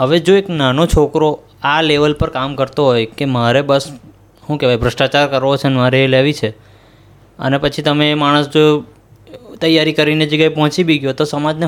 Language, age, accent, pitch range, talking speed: Gujarati, 20-39, native, 120-155 Hz, 145 wpm